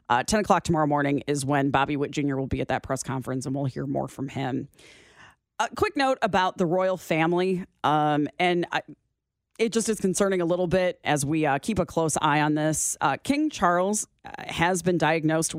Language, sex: English, female